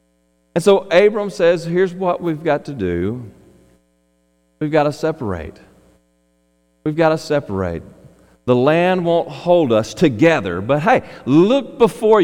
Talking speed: 135 wpm